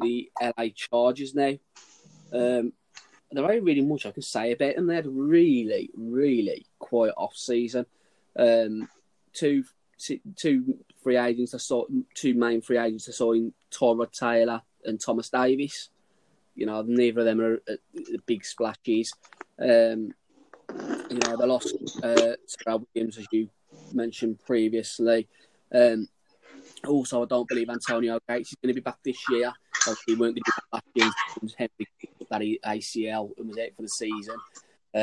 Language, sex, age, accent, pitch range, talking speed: English, male, 20-39, British, 110-125 Hz, 150 wpm